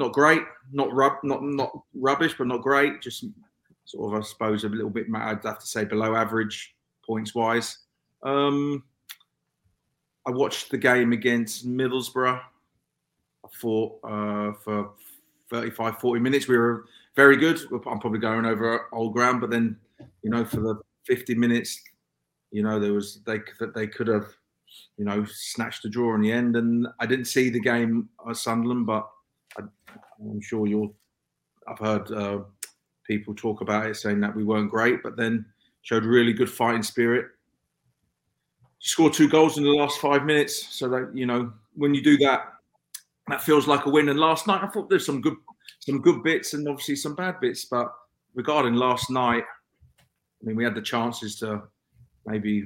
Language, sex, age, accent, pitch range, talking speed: English, male, 30-49, British, 110-130 Hz, 180 wpm